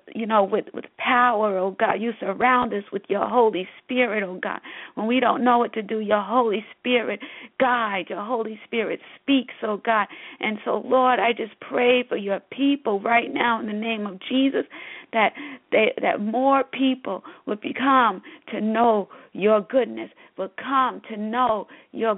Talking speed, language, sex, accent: 175 wpm, English, female, American